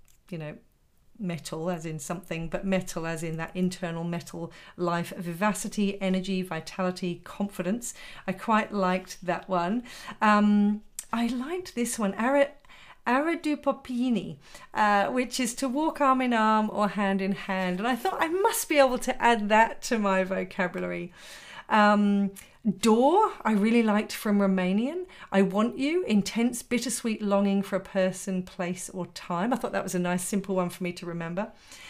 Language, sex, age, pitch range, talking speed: English, female, 40-59, 190-240 Hz, 165 wpm